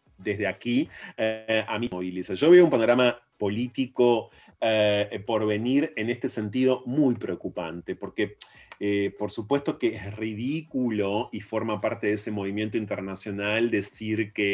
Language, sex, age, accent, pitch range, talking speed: Spanish, male, 30-49, Argentinian, 100-125 Hz, 150 wpm